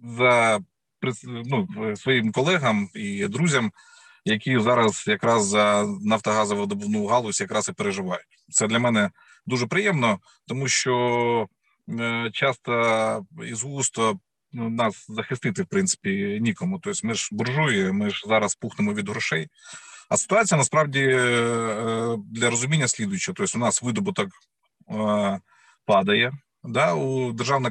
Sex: male